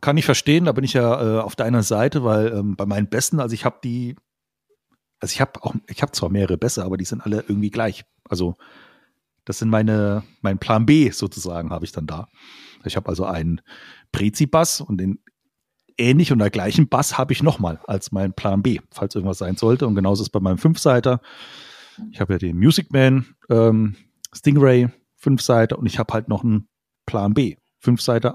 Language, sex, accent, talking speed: German, male, German, 200 wpm